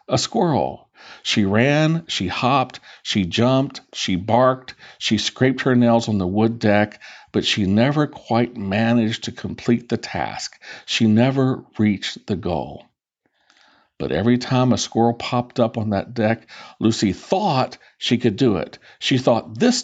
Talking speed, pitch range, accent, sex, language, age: 155 wpm, 110-150 Hz, American, male, English, 50-69